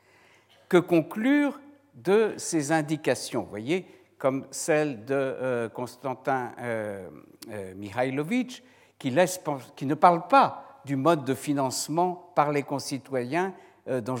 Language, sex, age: French, male, 60-79